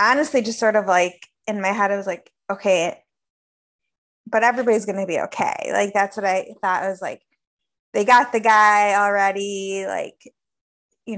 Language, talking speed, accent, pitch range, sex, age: English, 170 wpm, American, 190-235 Hz, female, 20-39